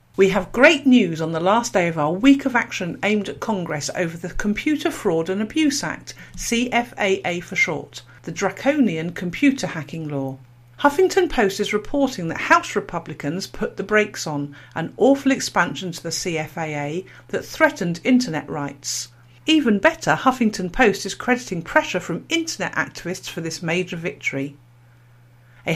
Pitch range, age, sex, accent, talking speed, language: 170-240 Hz, 50-69, female, British, 155 wpm, English